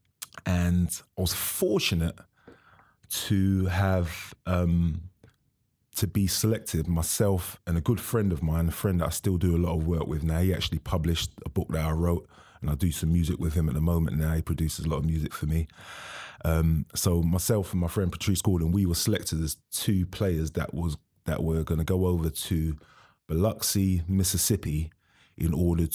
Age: 20-39